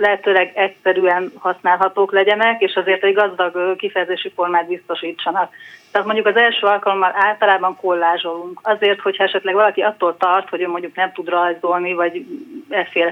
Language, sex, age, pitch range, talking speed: Hungarian, female, 30-49, 180-205 Hz, 145 wpm